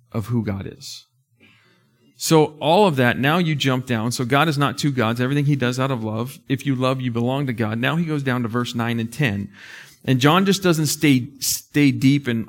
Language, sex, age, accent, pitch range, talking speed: English, male, 40-59, American, 110-135 Hz, 230 wpm